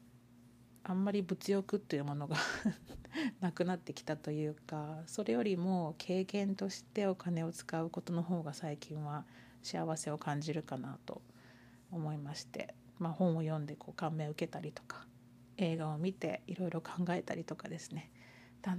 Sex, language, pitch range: female, Japanese, 130-195 Hz